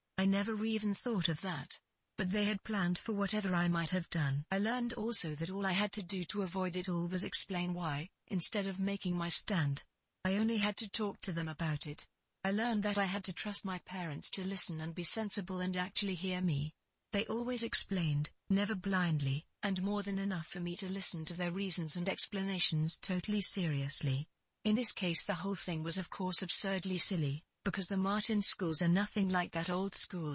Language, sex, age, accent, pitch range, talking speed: English, female, 40-59, British, 170-205 Hz, 210 wpm